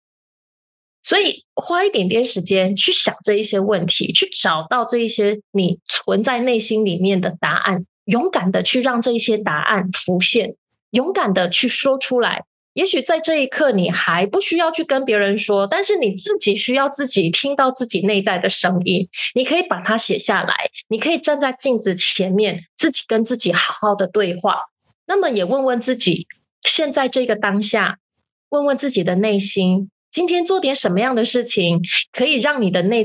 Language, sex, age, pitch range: Chinese, female, 20-39, 190-260 Hz